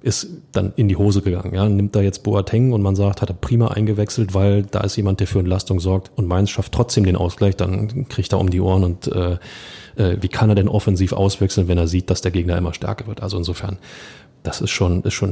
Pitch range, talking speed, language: 100-125 Hz, 245 wpm, German